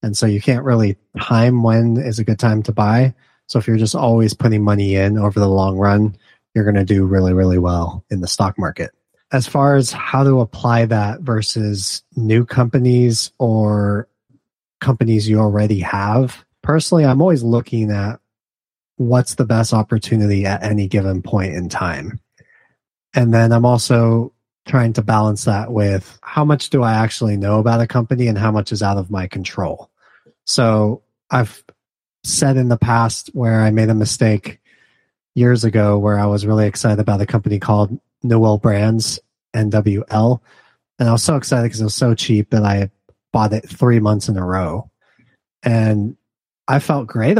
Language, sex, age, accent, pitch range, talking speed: English, male, 30-49, American, 105-120 Hz, 175 wpm